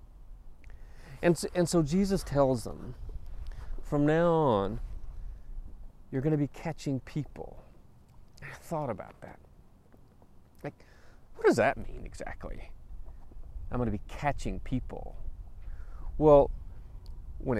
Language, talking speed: English, 115 wpm